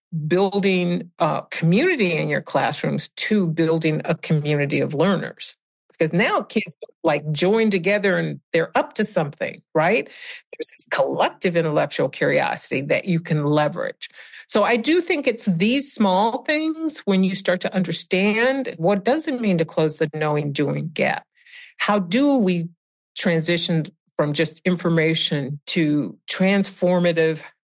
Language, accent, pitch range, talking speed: English, American, 165-225 Hz, 140 wpm